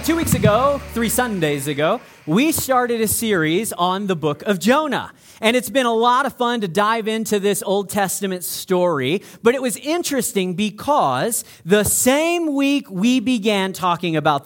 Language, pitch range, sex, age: English, 180-265 Hz, male, 40-59